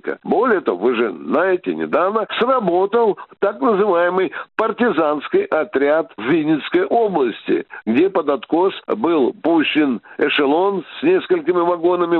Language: Russian